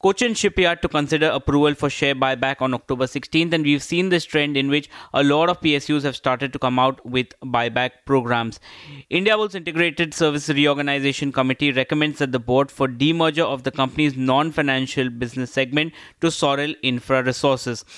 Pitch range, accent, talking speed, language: 130-155 Hz, Indian, 175 wpm, English